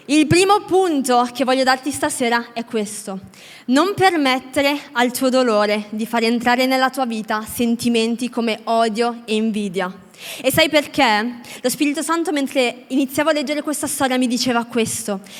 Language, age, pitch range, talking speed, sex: Italian, 20-39, 220-280 Hz, 155 wpm, female